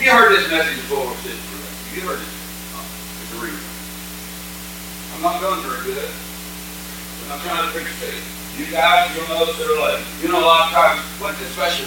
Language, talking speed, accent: English, 190 wpm, American